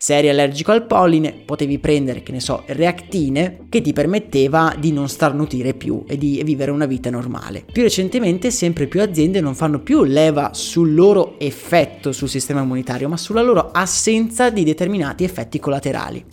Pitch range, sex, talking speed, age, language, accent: 140-185 Hz, male, 175 wpm, 20-39, Italian, native